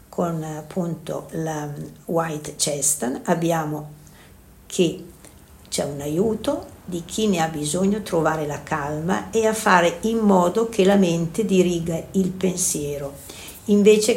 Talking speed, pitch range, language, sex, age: 125 wpm, 155-195 Hz, Italian, female, 60-79